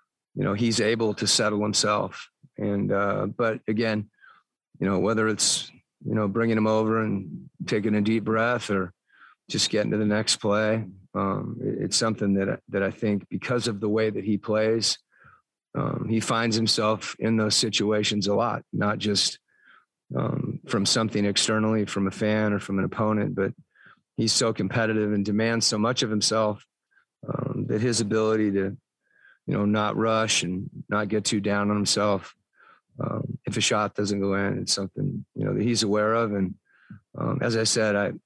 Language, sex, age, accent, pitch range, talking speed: English, male, 40-59, American, 100-110 Hz, 180 wpm